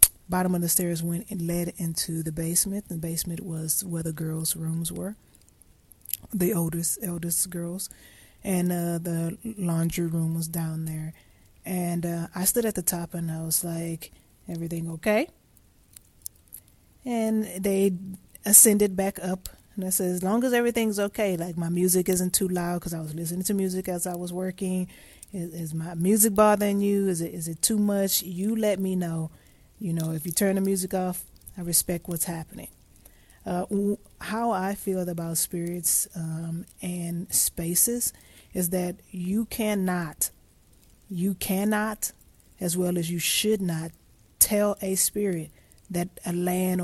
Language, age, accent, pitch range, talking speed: English, 20-39, American, 165-190 Hz, 165 wpm